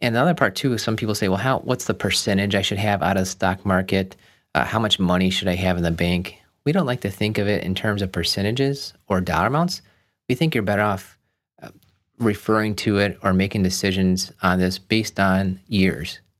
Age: 30-49